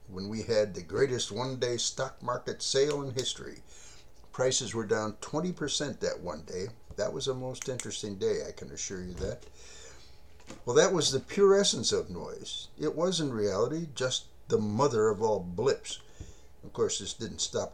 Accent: American